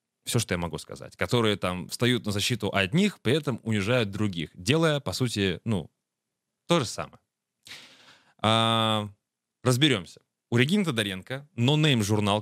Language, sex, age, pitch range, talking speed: Russian, male, 20-39, 95-125 Hz, 135 wpm